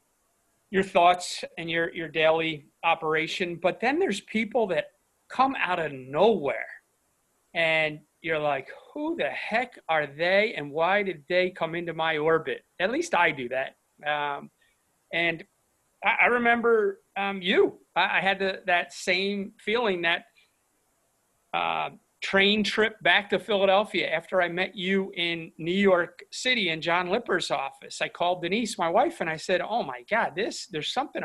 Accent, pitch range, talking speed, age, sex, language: American, 160-200 Hz, 165 wpm, 40-59, male, English